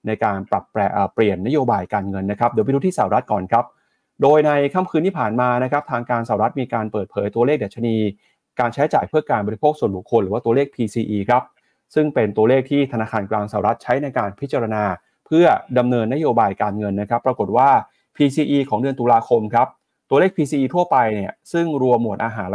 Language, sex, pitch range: Thai, male, 105-140 Hz